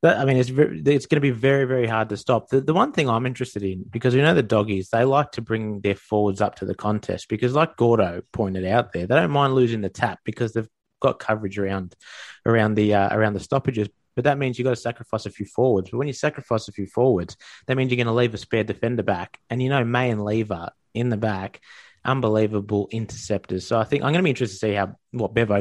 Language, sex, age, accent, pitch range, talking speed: English, male, 20-39, Australian, 105-130 Hz, 255 wpm